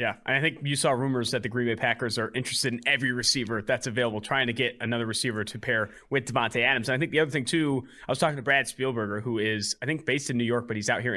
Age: 30-49